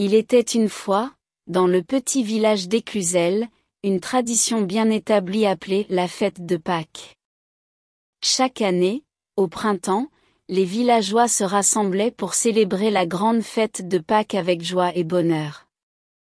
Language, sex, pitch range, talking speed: French, female, 185-225 Hz, 135 wpm